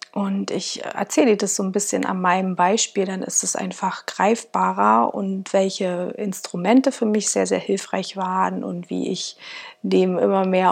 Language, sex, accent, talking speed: German, female, German, 175 wpm